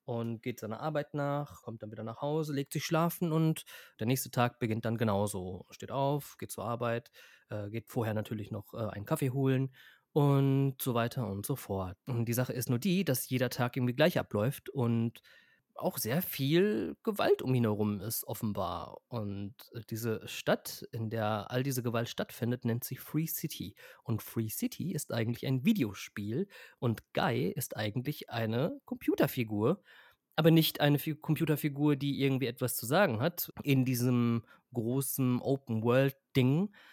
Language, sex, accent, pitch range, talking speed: German, male, German, 115-155 Hz, 165 wpm